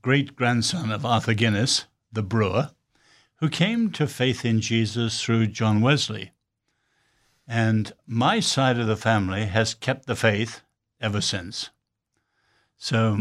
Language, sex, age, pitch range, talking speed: English, male, 60-79, 110-125 Hz, 125 wpm